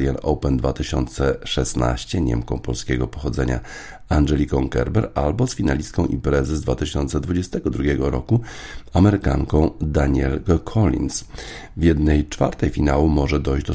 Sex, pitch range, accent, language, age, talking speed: male, 70-80 Hz, native, Polish, 50-69, 105 wpm